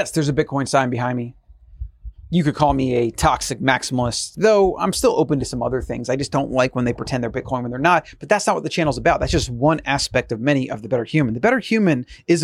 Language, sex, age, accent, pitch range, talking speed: English, male, 30-49, American, 140-195 Hz, 265 wpm